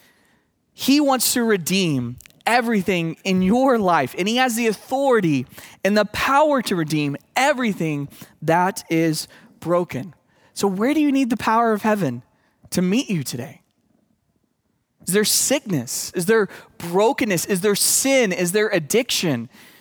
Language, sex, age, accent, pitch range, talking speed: English, male, 20-39, American, 170-240 Hz, 140 wpm